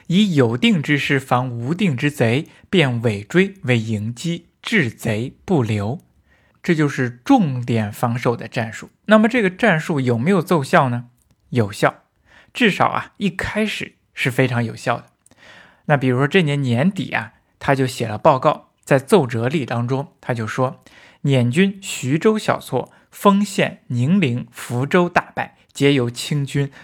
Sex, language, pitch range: male, Chinese, 125-180 Hz